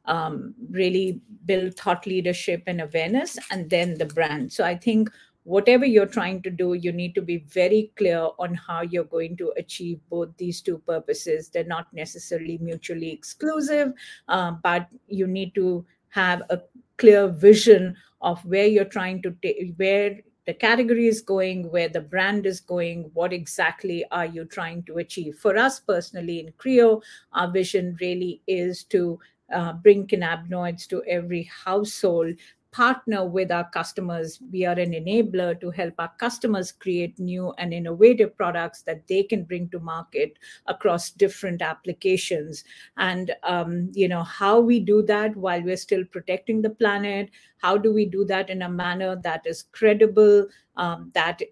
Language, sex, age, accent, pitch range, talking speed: English, female, 50-69, Indian, 175-210 Hz, 165 wpm